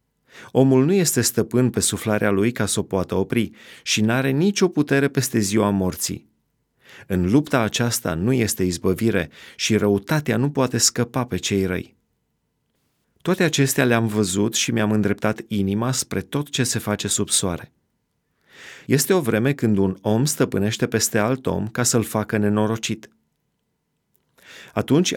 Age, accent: 30-49, native